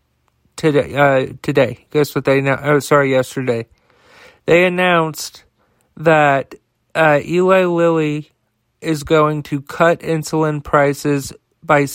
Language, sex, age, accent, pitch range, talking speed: English, male, 40-59, American, 140-160 Hz, 115 wpm